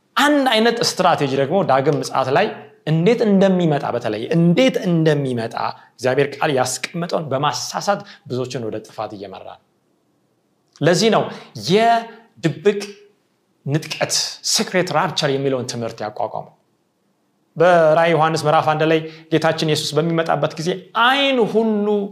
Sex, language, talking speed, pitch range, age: male, Amharic, 90 wpm, 150-215 Hz, 30-49